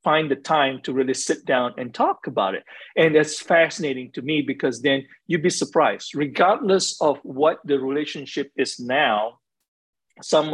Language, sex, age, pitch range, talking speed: English, male, 50-69, 135-175 Hz, 165 wpm